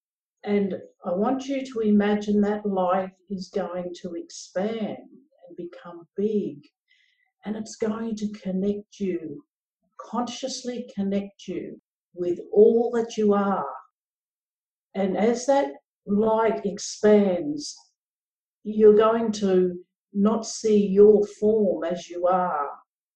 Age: 60-79